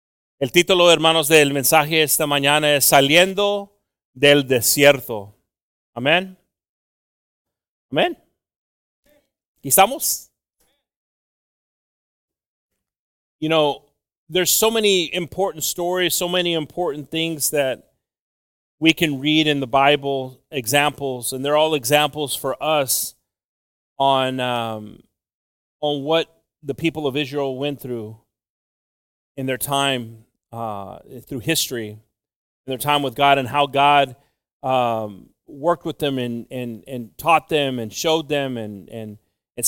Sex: male